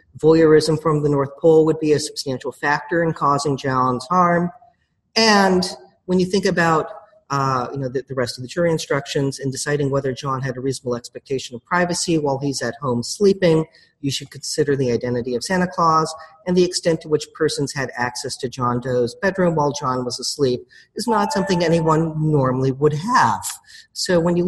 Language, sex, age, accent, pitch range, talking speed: English, male, 40-59, American, 135-175 Hz, 190 wpm